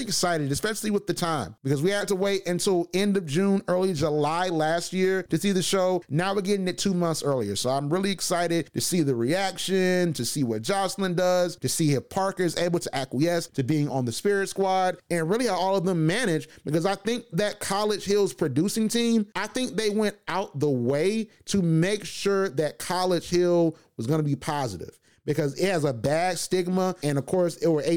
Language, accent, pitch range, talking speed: English, American, 150-185 Hz, 210 wpm